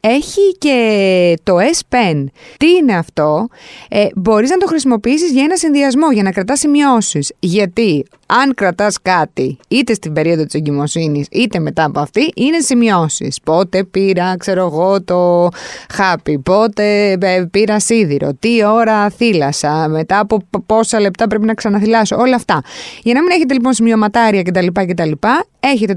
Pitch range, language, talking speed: 180-270 Hz, Greek, 150 wpm